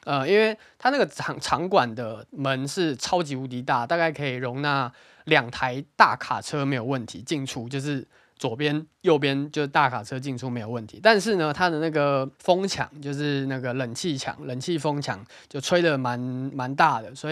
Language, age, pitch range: Chinese, 20-39, 130-155 Hz